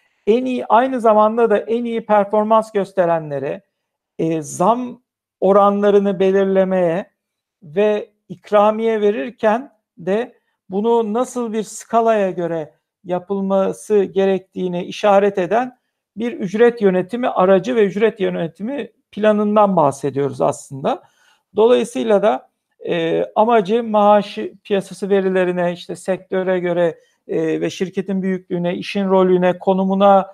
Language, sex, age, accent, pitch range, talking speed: Turkish, male, 60-79, native, 185-220 Hz, 100 wpm